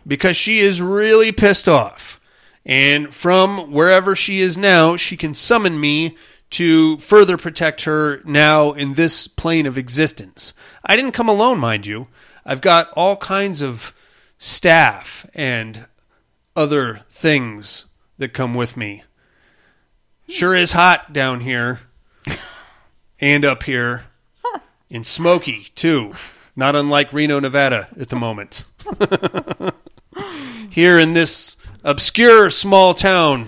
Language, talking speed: English, 125 wpm